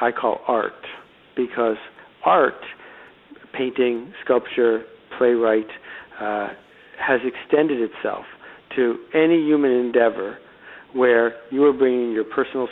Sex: male